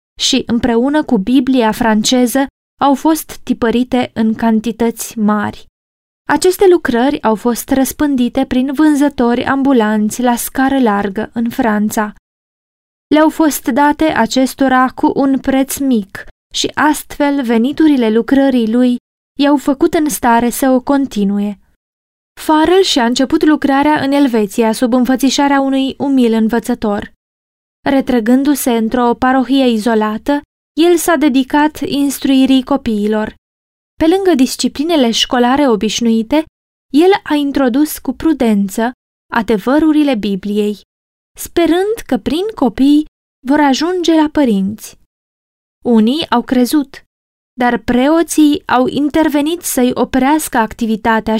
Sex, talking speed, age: female, 110 wpm, 20-39